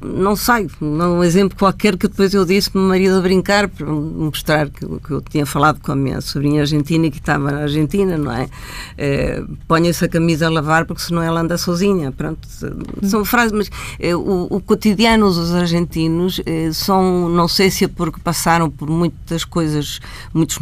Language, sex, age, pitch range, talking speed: Portuguese, female, 50-69, 145-175 Hz, 200 wpm